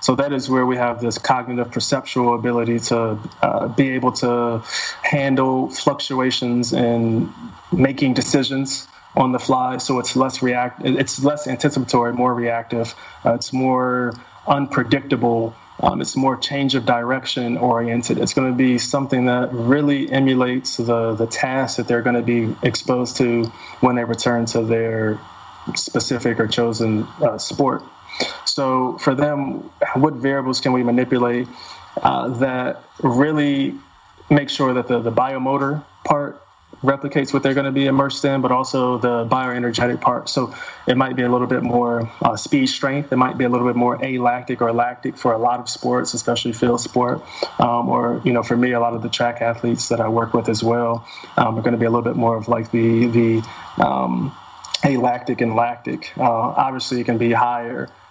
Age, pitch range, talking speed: 20-39, 120-135 Hz, 180 wpm